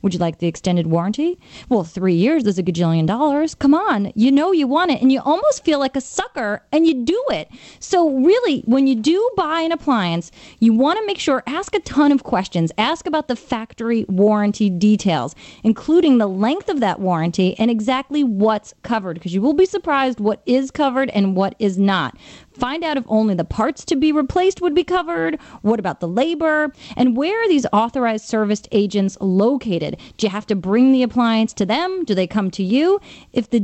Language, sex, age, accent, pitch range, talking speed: English, female, 30-49, American, 205-300 Hz, 205 wpm